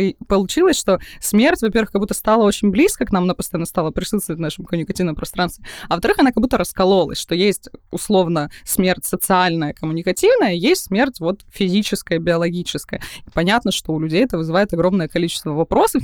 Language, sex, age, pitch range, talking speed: Russian, female, 20-39, 165-205 Hz, 175 wpm